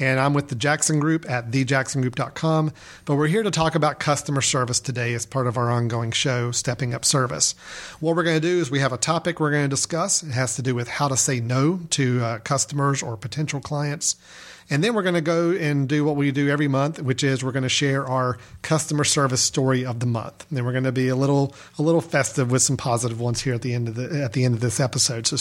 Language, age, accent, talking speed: English, 40-59, American, 255 wpm